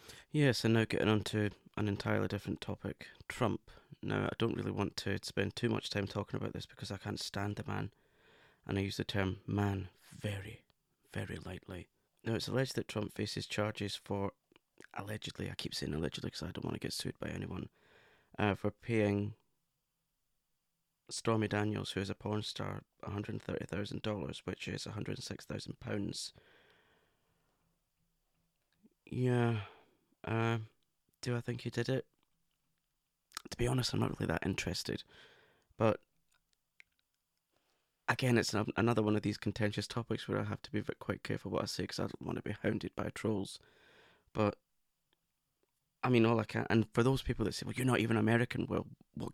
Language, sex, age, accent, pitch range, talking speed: English, male, 20-39, British, 105-125 Hz, 170 wpm